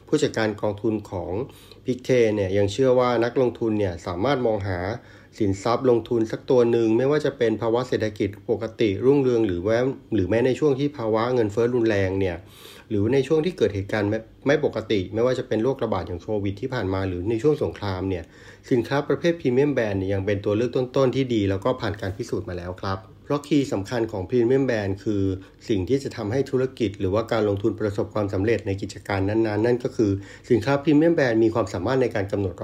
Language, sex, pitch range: Thai, male, 100-120 Hz